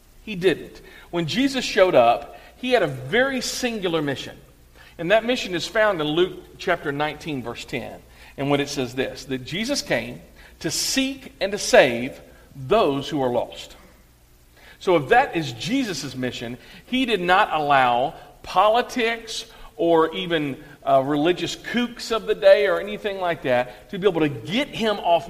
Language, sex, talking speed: English, male, 165 wpm